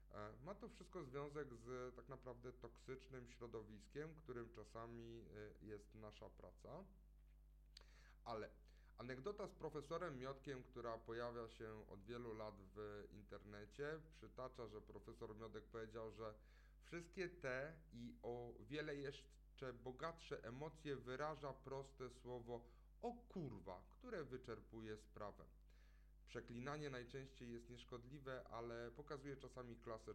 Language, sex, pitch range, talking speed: Polish, male, 110-135 Hz, 115 wpm